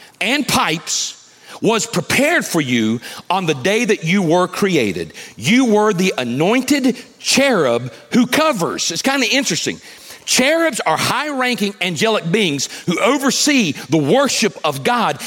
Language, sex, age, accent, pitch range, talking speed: English, male, 40-59, American, 160-260 Hz, 140 wpm